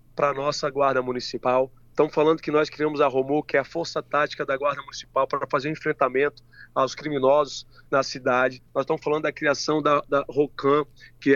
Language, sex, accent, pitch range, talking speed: Portuguese, male, Brazilian, 130-150 Hz, 200 wpm